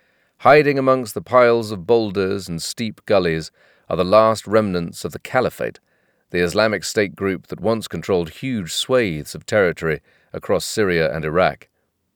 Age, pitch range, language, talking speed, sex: 40-59, 90-120 Hz, English, 155 wpm, male